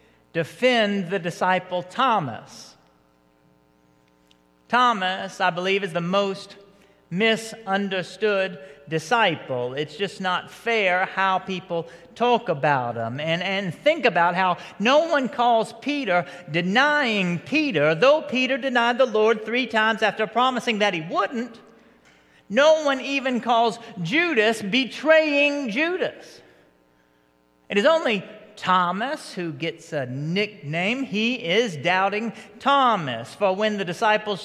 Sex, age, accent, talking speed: male, 40-59, American, 115 wpm